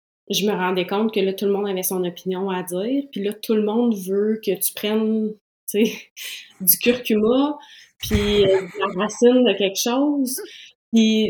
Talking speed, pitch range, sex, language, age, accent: 185 wpm, 185-215 Hz, female, French, 30-49, Canadian